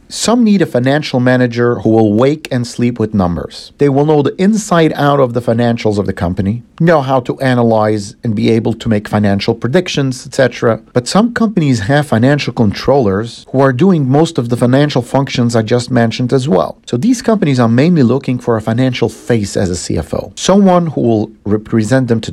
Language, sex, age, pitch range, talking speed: English, male, 50-69, 110-150 Hz, 200 wpm